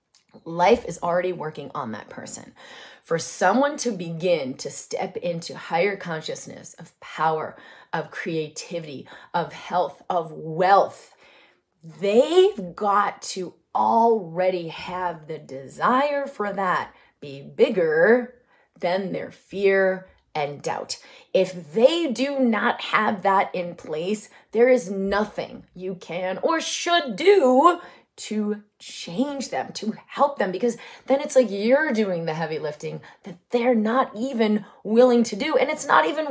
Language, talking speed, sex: English, 135 wpm, female